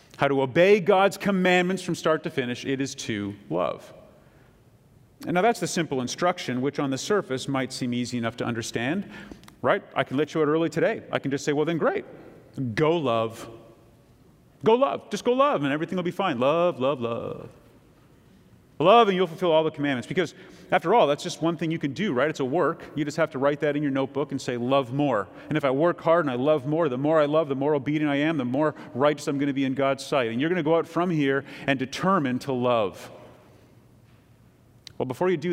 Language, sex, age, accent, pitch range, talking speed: English, male, 40-59, American, 125-160 Hz, 230 wpm